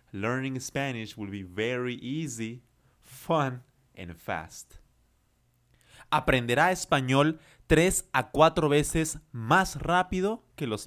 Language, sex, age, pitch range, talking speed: Spanish, male, 30-49, 105-155 Hz, 105 wpm